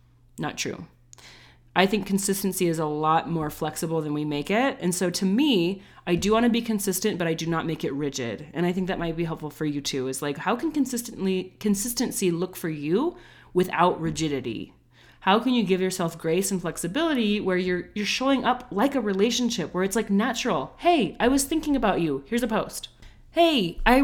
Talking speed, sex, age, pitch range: 205 wpm, female, 30-49, 165-235 Hz